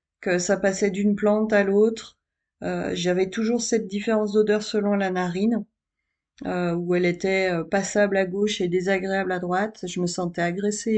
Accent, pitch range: French, 180-215 Hz